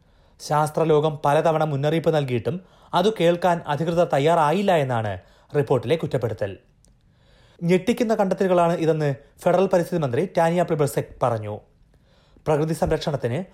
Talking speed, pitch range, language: 95 wpm, 135-175 Hz, Malayalam